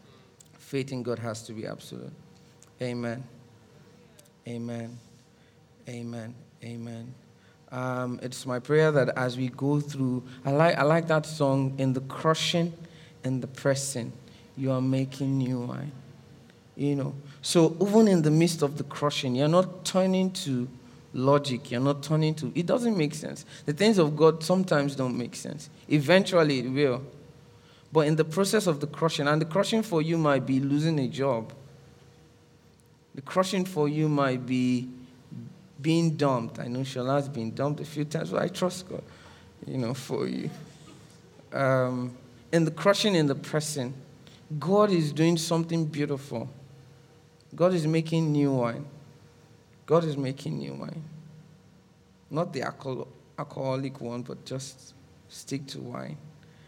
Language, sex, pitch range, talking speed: English, male, 125-160 Hz, 155 wpm